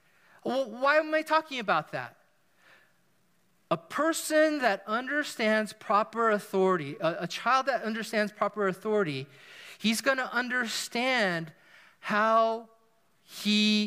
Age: 40-59